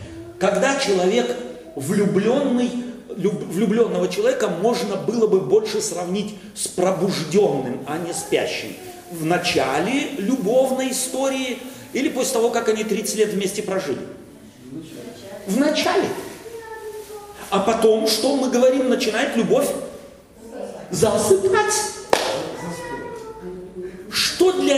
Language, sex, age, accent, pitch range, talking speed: Russian, male, 40-59, native, 205-300 Hz, 95 wpm